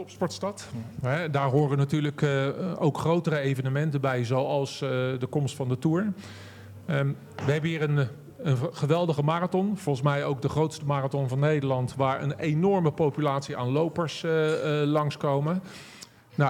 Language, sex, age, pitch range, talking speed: Dutch, male, 40-59, 135-155 Hz, 125 wpm